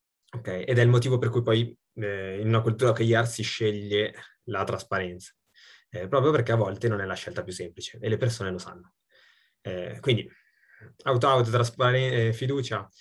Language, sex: Italian, male